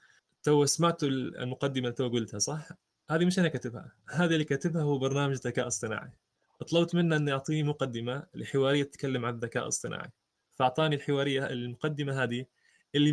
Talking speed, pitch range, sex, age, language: 150 wpm, 130-150 Hz, male, 20-39, Arabic